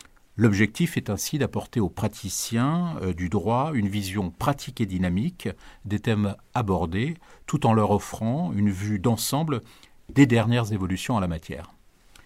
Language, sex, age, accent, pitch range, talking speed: French, male, 50-69, French, 95-120 Hz, 140 wpm